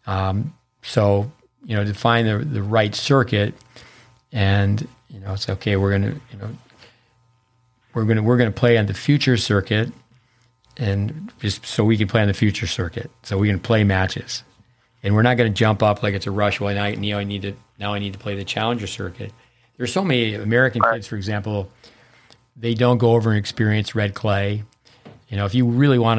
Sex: male